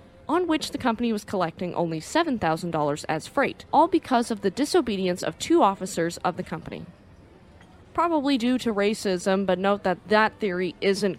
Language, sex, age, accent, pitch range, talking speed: English, female, 20-39, American, 175-240 Hz, 165 wpm